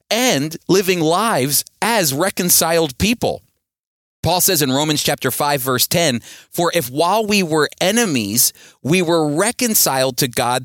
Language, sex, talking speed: English, male, 140 wpm